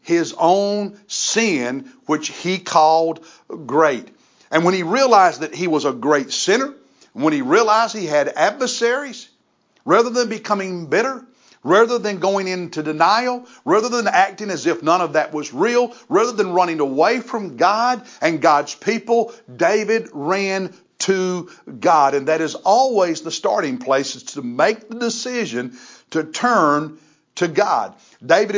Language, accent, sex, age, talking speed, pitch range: English, American, male, 50-69, 150 wpm, 160-235 Hz